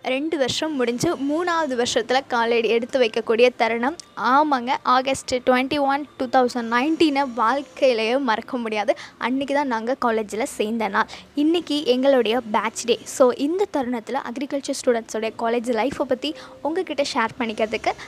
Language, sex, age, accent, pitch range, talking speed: Tamil, female, 20-39, native, 235-300 Hz, 135 wpm